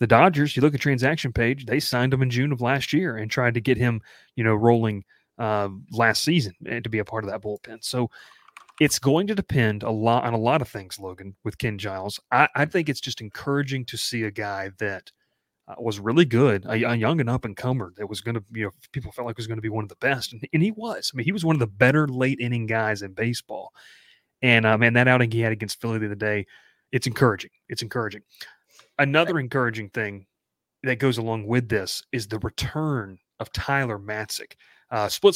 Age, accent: 30-49, American